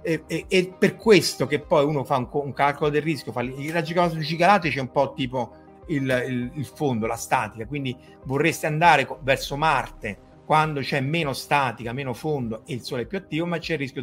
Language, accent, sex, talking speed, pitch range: Italian, native, male, 200 wpm, 120-155 Hz